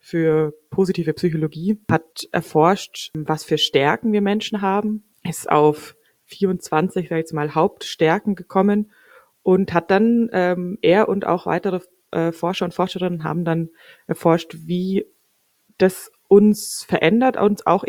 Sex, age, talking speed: female, 20-39, 130 wpm